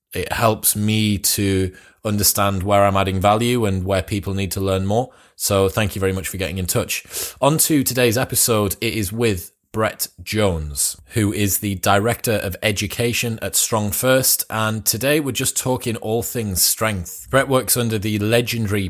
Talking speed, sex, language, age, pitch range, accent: 180 wpm, male, English, 20-39, 95-110 Hz, British